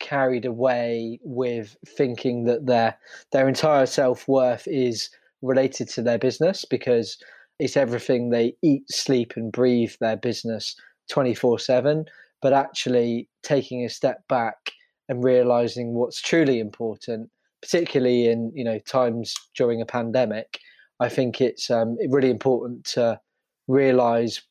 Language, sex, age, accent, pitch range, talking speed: English, male, 20-39, British, 120-130 Hz, 130 wpm